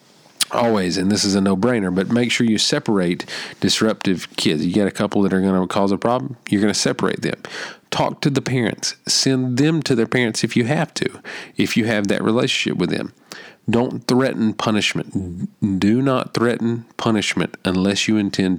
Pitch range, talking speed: 95-115 Hz, 195 wpm